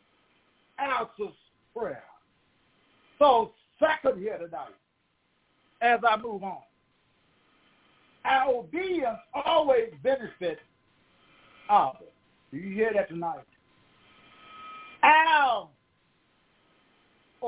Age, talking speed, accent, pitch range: 60-79, 70 wpm, American, 220-340 Hz